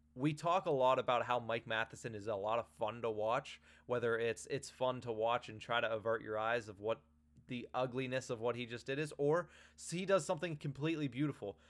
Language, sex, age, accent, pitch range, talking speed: English, male, 20-39, American, 120-155 Hz, 220 wpm